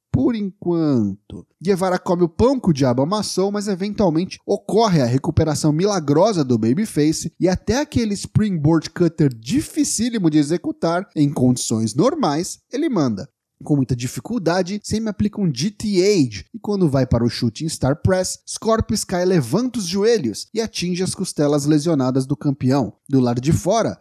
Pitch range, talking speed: 135-200 Hz, 155 wpm